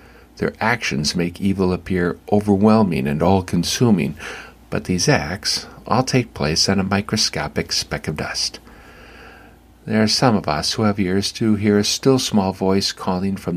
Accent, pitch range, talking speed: American, 85-105 Hz, 165 wpm